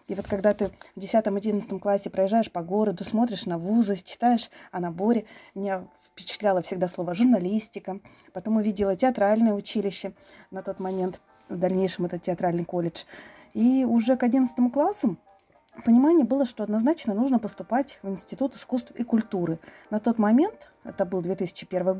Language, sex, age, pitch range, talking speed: Russian, female, 20-39, 190-245 Hz, 150 wpm